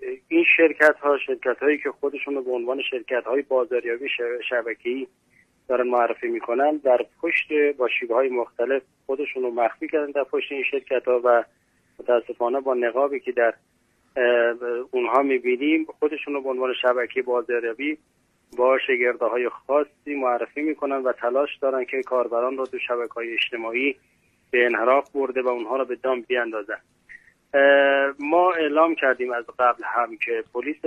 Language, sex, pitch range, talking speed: Persian, male, 120-145 Hz, 145 wpm